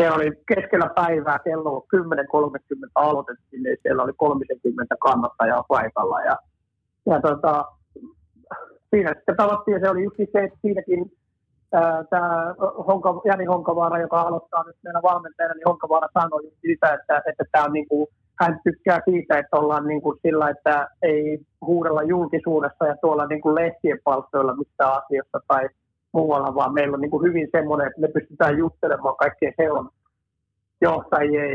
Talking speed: 140 wpm